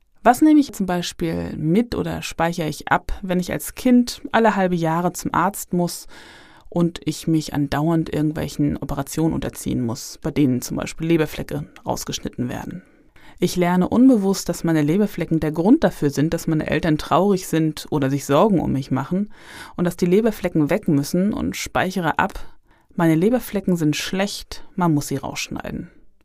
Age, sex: 20-39, female